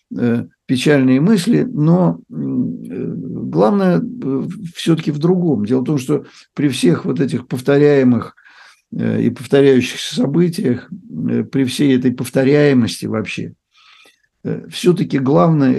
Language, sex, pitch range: Russian, male, 125-145 Hz